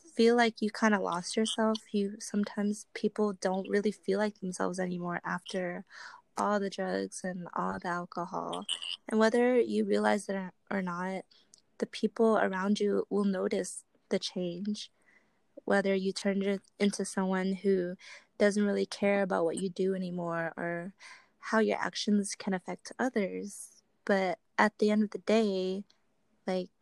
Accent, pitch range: American, 185-210 Hz